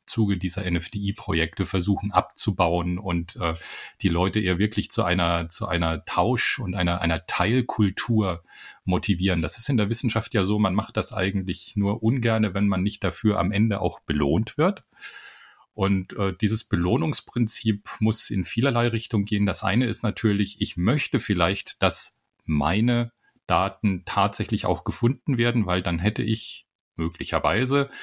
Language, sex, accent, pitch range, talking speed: German, male, German, 90-110 Hz, 150 wpm